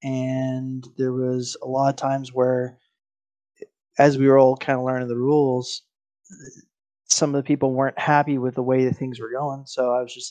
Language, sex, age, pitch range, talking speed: English, male, 20-39, 125-140 Hz, 200 wpm